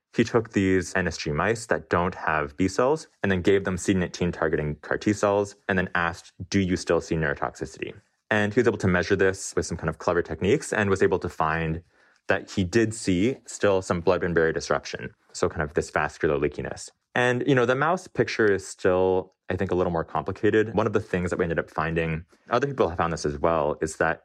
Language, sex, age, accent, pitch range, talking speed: English, male, 20-39, American, 85-105 Hz, 230 wpm